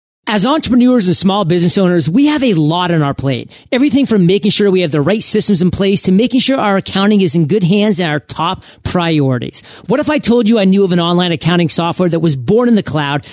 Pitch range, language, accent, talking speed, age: 165-220 Hz, English, American, 250 wpm, 40-59